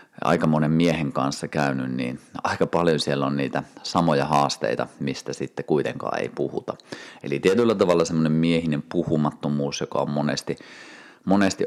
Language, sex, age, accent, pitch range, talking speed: Finnish, male, 30-49, native, 70-80 Hz, 145 wpm